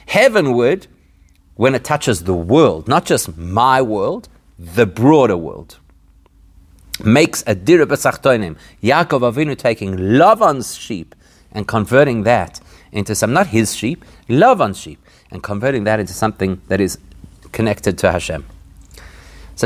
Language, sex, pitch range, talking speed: English, male, 85-115 Hz, 135 wpm